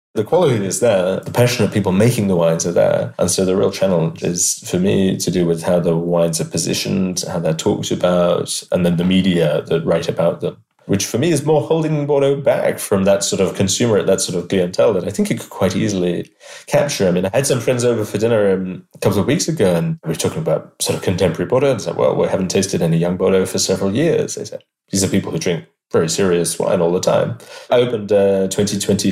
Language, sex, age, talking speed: English, male, 30-49, 245 wpm